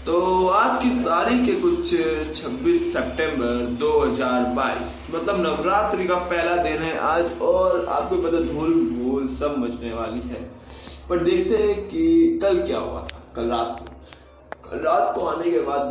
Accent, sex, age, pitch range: native, male, 20-39, 115-145 Hz